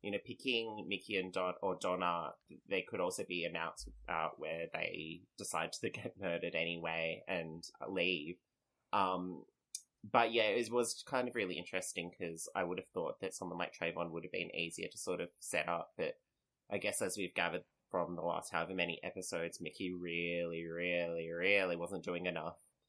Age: 20-39